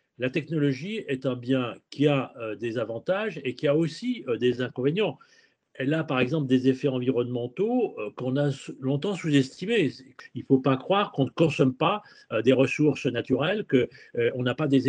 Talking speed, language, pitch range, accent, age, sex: 190 wpm, French, 130-185 Hz, French, 40-59, male